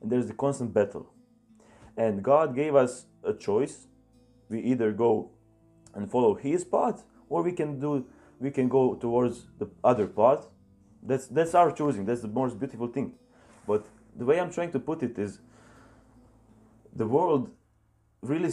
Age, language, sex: 30-49, English, male